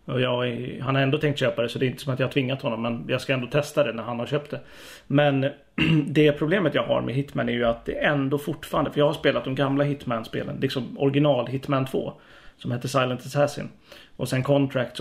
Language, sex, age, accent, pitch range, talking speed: Swedish, male, 30-49, native, 125-145 Hz, 250 wpm